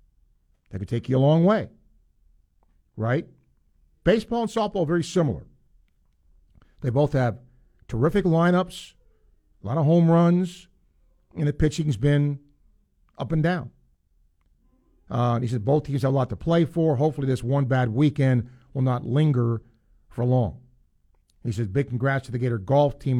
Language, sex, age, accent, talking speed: English, male, 50-69, American, 160 wpm